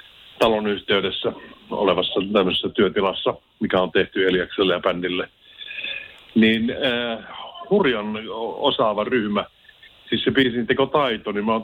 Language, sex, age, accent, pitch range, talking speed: Finnish, male, 50-69, native, 100-125 Hz, 125 wpm